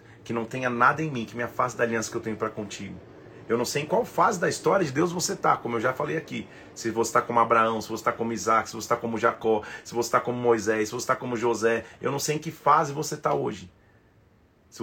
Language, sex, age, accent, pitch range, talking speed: Portuguese, male, 30-49, Brazilian, 105-125 Hz, 275 wpm